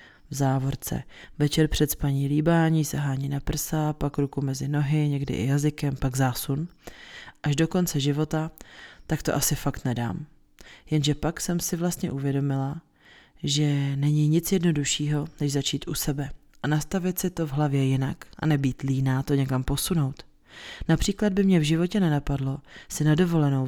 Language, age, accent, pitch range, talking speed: Czech, 30-49, native, 140-160 Hz, 160 wpm